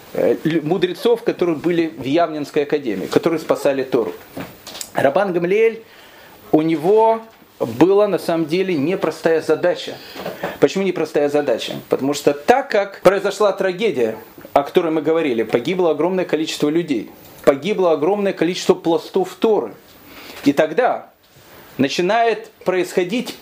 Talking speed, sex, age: 115 wpm, male, 40-59